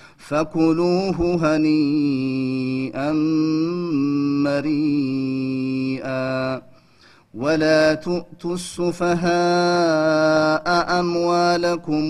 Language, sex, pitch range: Amharic, male, 140-165 Hz